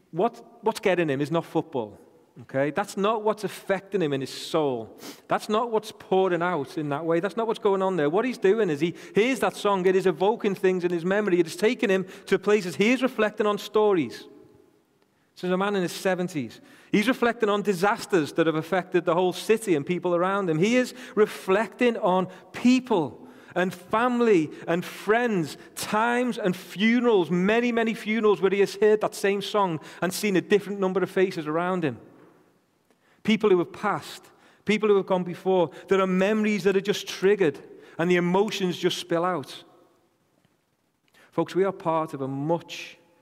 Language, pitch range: English, 170-210 Hz